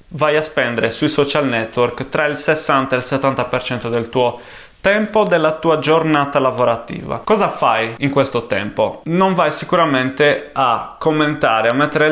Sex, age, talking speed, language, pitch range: male, 20-39, 155 wpm, Italian, 125-155 Hz